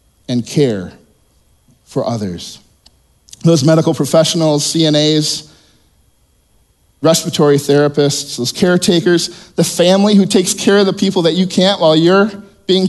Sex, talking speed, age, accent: male, 120 wpm, 50-69, American